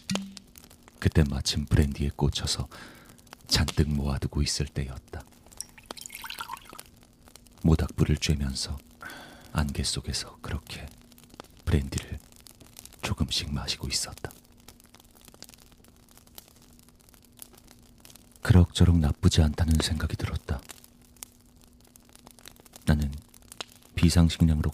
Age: 40-59